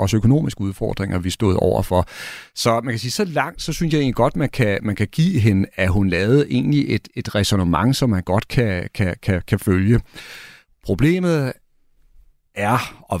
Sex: male